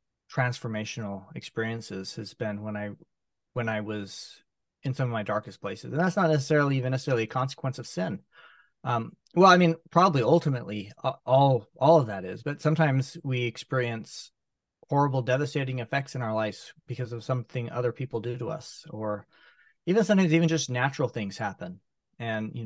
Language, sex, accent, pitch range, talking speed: English, male, American, 110-135 Hz, 170 wpm